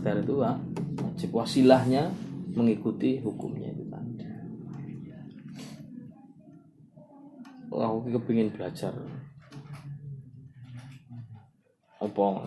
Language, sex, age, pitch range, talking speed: Malay, male, 20-39, 110-150 Hz, 65 wpm